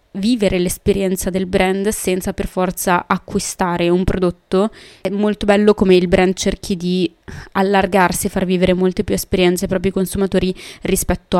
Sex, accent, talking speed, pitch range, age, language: female, native, 155 wpm, 175-200 Hz, 20-39, Italian